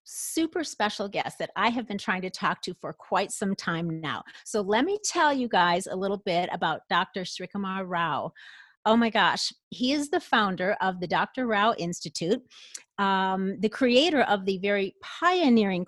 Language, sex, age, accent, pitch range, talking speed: English, female, 40-59, American, 180-245 Hz, 180 wpm